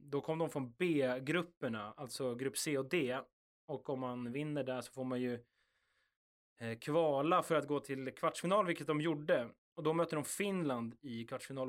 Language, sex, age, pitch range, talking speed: Swedish, male, 20-39, 125-155 Hz, 180 wpm